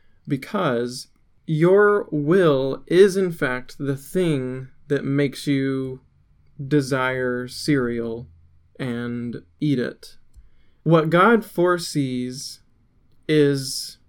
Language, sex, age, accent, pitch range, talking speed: English, male, 20-39, American, 125-155 Hz, 85 wpm